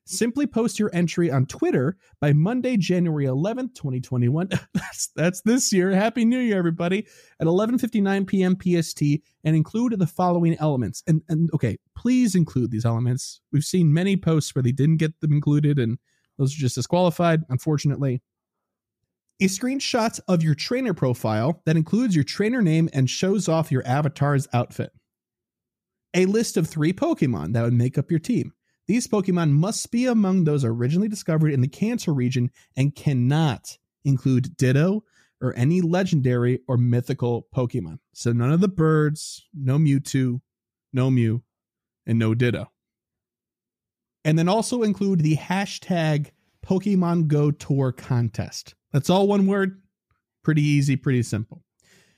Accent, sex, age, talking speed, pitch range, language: American, male, 30-49, 150 wpm, 130-190 Hz, English